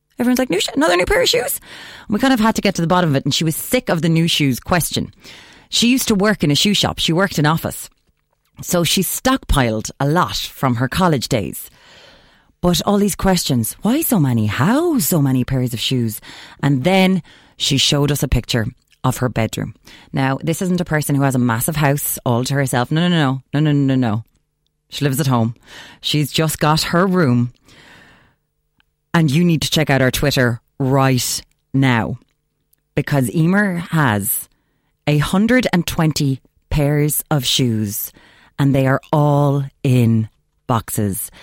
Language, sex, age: English, female, 30-49